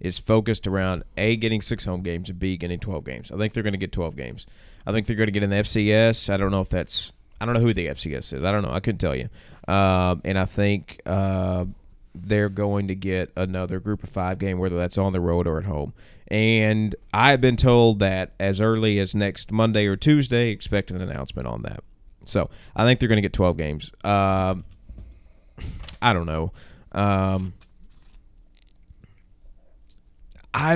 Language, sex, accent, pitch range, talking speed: English, male, American, 95-115 Hz, 200 wpm